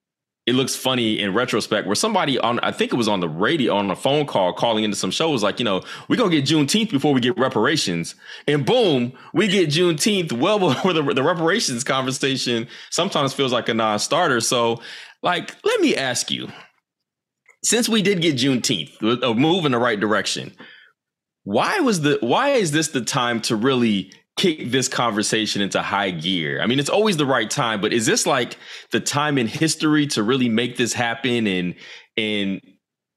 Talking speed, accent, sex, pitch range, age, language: 190 wpm, American, male, 110-160 Hz, 20-39, English